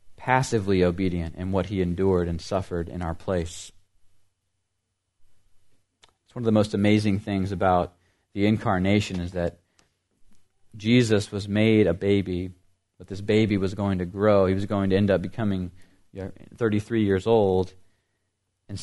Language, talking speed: English, 145 wpm